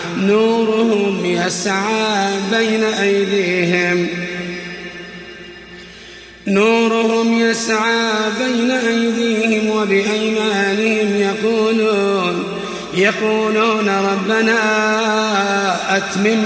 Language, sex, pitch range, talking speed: Arabic, male, 190-220 Hz, 45 wpm